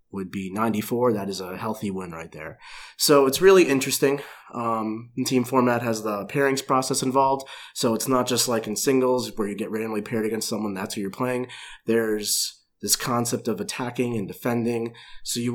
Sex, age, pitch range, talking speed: male, 30-49, 110-135 Hz, 190 wpm